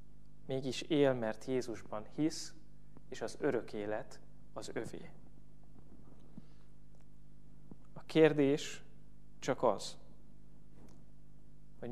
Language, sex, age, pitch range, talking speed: Hungarian, male, 20-39, 125-145 Hz, 80 wpm